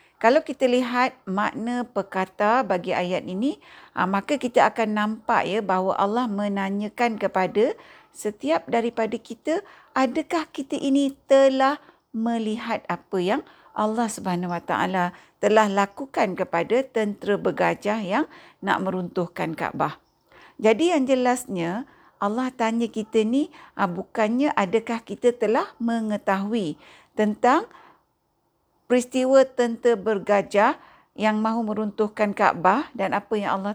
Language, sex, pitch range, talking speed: Malay, female, 200-255 Hz, 110 wpm